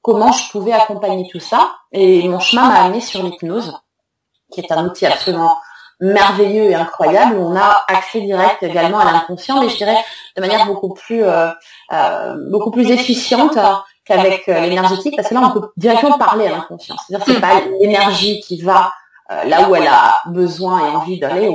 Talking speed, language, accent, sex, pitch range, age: 200 wpm, French, French, female, 170-220 Hz, 30-49